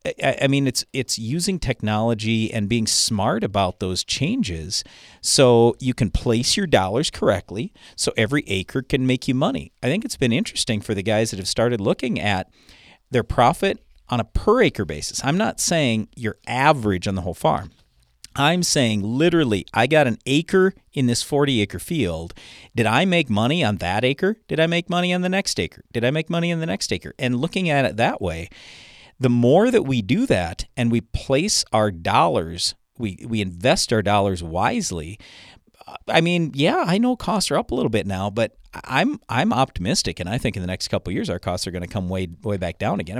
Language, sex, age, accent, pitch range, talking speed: English, male, 40-59, American, 95-135 Hz, 205 wpm